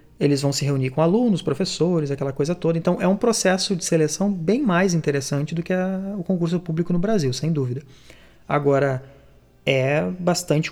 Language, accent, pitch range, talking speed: Portuguese, Brazilian, 135-165 Hz, 175 wpm